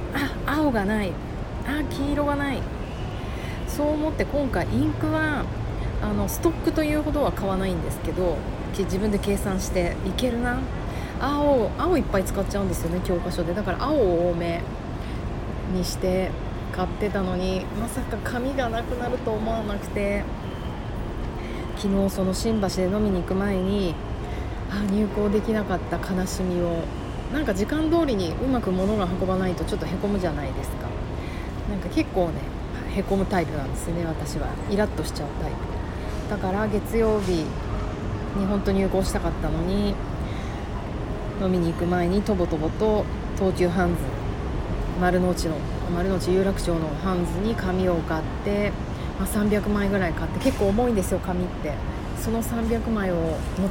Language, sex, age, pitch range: Japanese, female, 30-49, 170-210 Hz